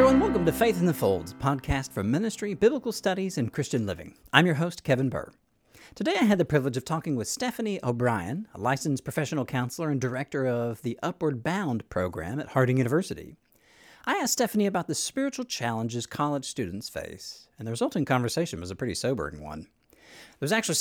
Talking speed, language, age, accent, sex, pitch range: 190 wpm, English, 40-59, American, male, 125-185 Hz